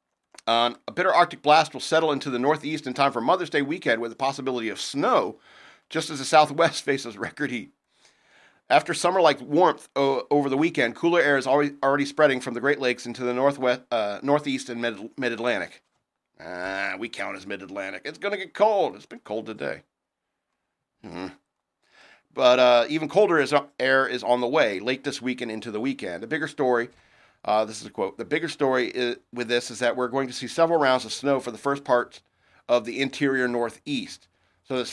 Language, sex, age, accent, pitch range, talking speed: English, male, 40-59, American, 115-140 Hz, 205 wpm